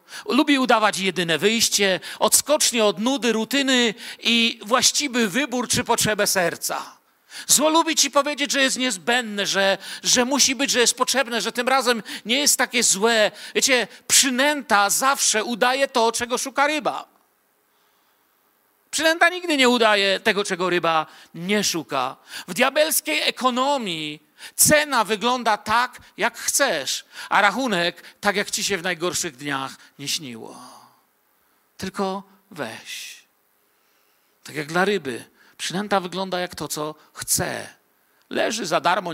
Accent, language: native, Polish